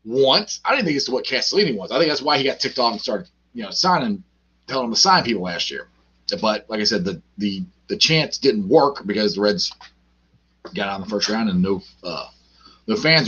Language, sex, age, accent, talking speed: English, male, 30-49, American, 240 wpm